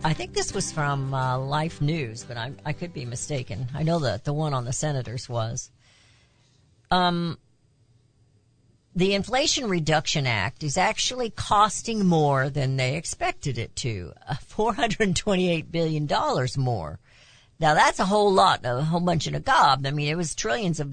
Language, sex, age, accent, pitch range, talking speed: English, female, 50-69, American, 125-180 Hz, 165 wpm